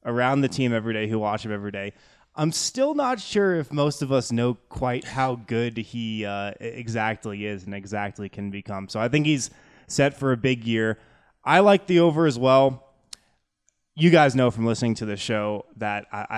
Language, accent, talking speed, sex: English, American, 200 wpm, male